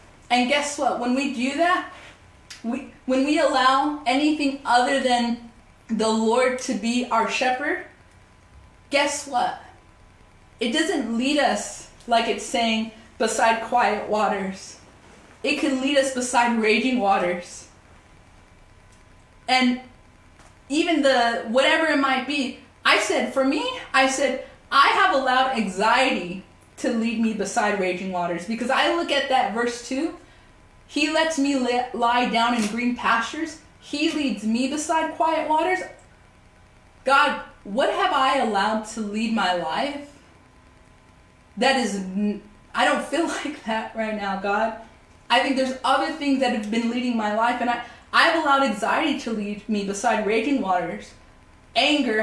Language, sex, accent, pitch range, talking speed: English, female, American, 225-275 Hz, 140 wpm